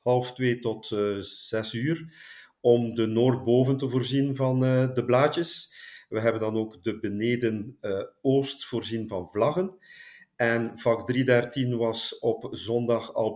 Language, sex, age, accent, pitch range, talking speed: Dutch, male, 50-69, Belgian, 105-125 Hz, 150 wpm